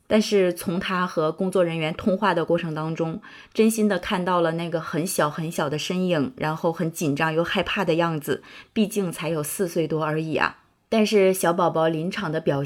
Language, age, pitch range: Chinese, 20-39, 155-195 Hz